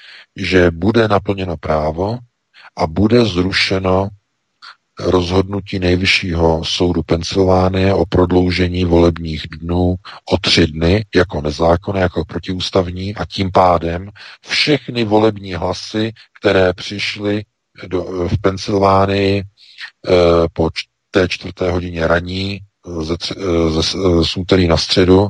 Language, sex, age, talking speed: Czech, male, 50-69, 100 wpm